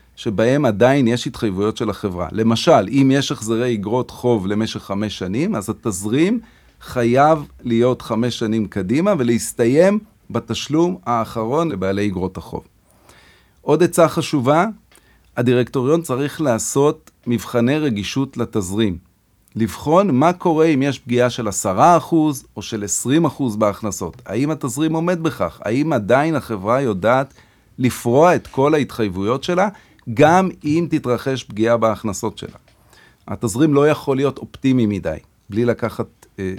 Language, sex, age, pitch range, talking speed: Hebrew, male, 40-59, 105-140 Hz, 130 wpm